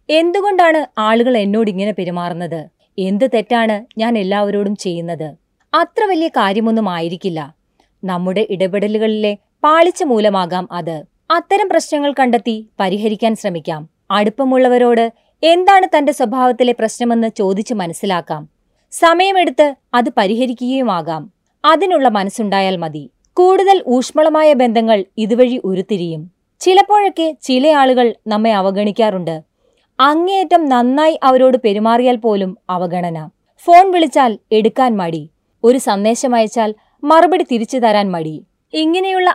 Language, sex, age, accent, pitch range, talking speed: Malayalam, female, 20-39, native, 200-290 Hz, 100 wpm